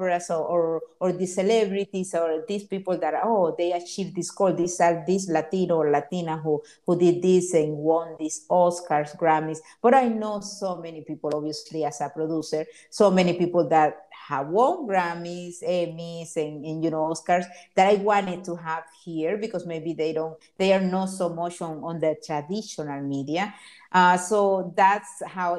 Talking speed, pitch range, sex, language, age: 175 wpm, 160-195 Hz, female, Spanish, 50-69